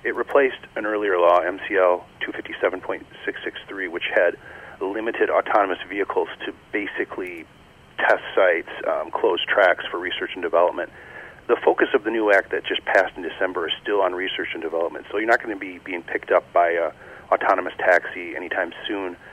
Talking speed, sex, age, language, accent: 170 wpm, male, 40-59, English, American